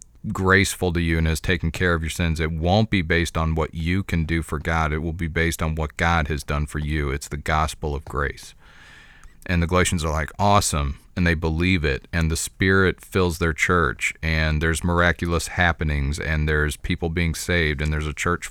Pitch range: 80-95 Hz